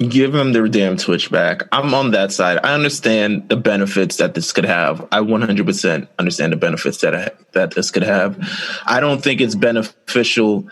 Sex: male